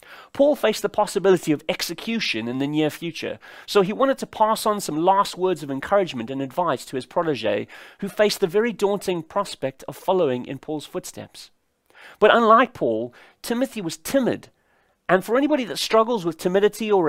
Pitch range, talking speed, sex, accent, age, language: 145-205 Hz, 180 wpm, male, British, 30-49, English